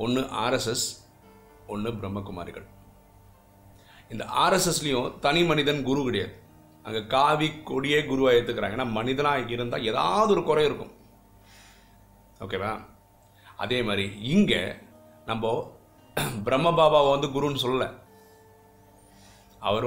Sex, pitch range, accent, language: male, 100-135 Hz, native, Tamil